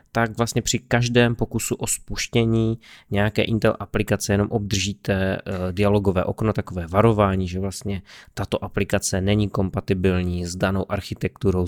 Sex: male